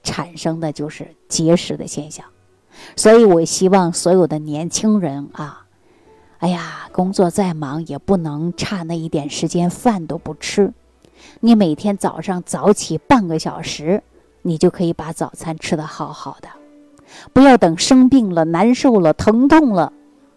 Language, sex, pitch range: Chinese, female, 165-225 Hz